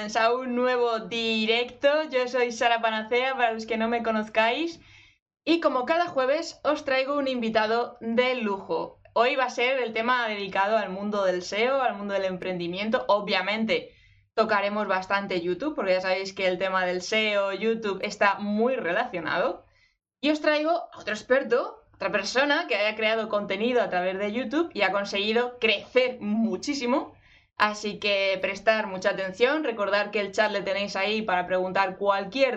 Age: 20-39